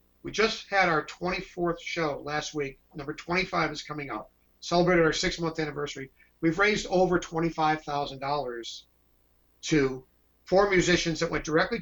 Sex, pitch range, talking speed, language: male, 135-170 Hz, 135 wpm, English